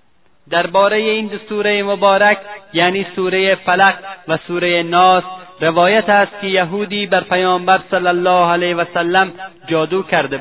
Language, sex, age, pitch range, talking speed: Persian, male, 30-49, 170-190 Hz, 135 wpm